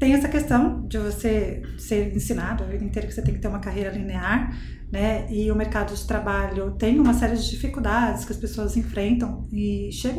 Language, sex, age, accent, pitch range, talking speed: Portuguese, female, 20-39, Brazilian, 215-280 Hz, 205 wpm